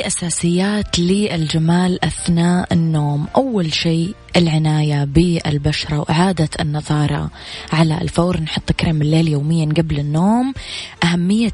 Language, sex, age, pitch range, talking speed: English, female, 20-39, 150-170 Hz, 100 wpm